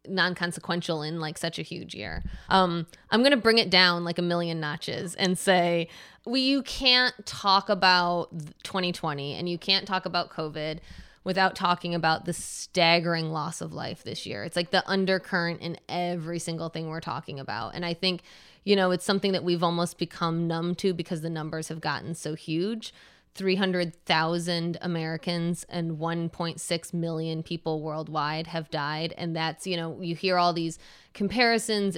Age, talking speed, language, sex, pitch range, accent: 20-39, 175 wpm, English, female, 160-185 Hz, American